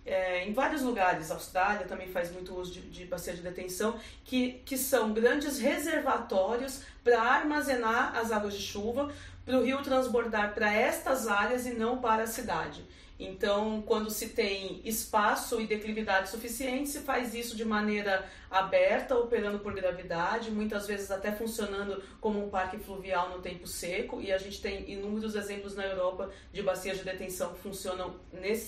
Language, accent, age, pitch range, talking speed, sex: Portuguese, Brazilian, 40-59, 195-235 Hz, 170 wpm, female